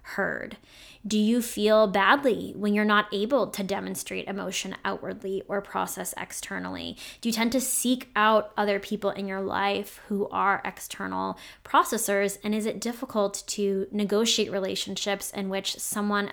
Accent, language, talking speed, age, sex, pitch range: American, English, 150 wpm, 20-39, female, 195-215 Hz